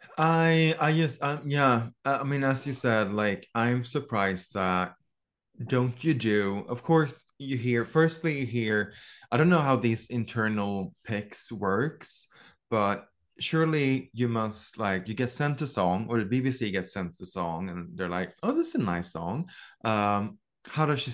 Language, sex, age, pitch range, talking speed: English, male, 20-39, 100-130 Hz, 175 wpm